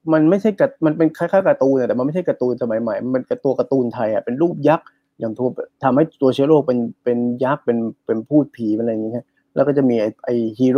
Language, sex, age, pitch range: Thai, male, 20-39, 120-140 Hz